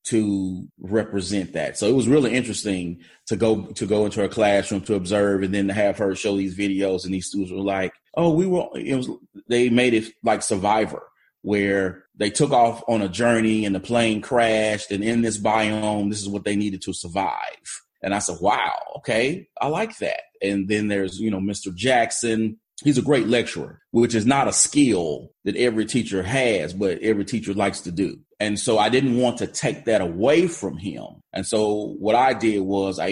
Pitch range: 100-115 Hz